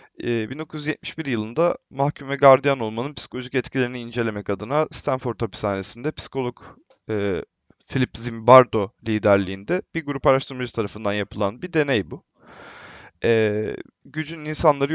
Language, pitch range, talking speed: Turkish, 110-155 Hz, 110 wpm